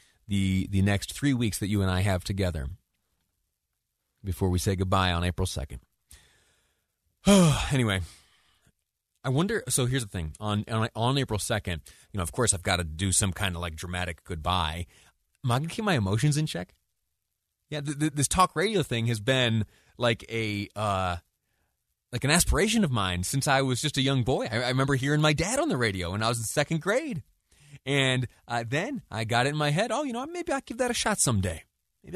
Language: English